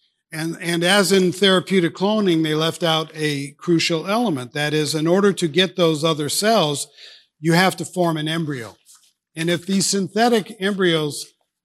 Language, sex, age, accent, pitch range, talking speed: English, male, 50-69, American, 155-190 Hz, 165 wpm